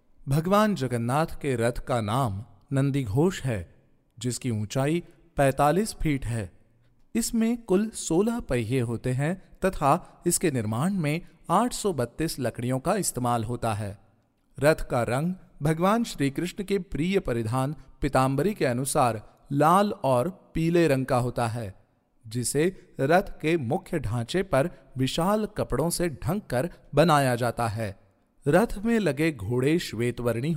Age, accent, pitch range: 40-59, native, 125-175 Hz